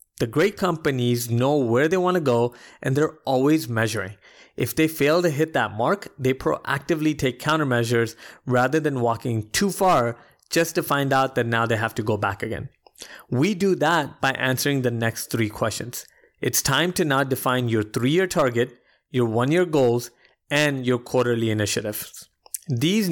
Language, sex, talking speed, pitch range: English, male, 170 wpm, 120-150 Hz